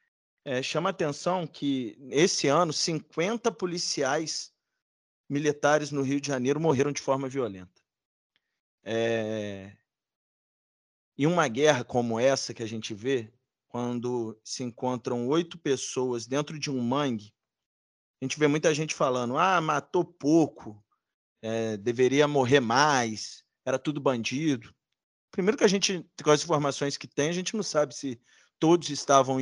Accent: Brazilian